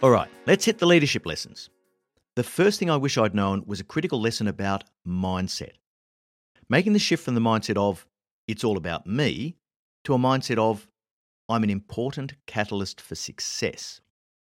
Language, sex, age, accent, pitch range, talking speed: English, male, 50-69, Australian, 90-130 Hz, 170 wpm